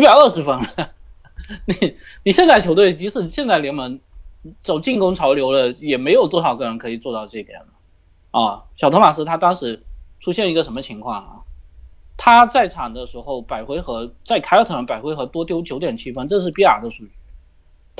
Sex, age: male, 20-39